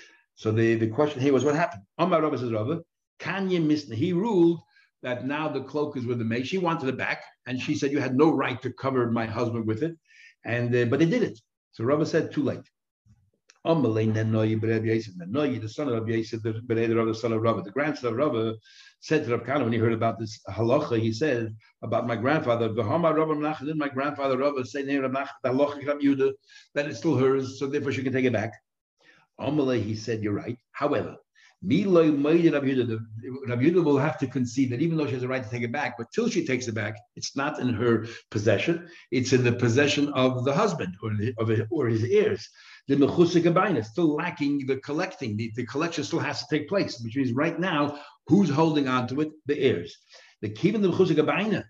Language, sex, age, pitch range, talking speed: English, male, 60-79, 115-155 Hz, 190 wpm